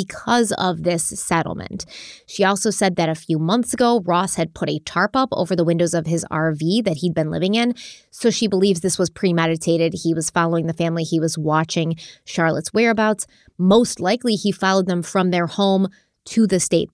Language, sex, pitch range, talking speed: English, female, 170-210 Hz, 200 wpm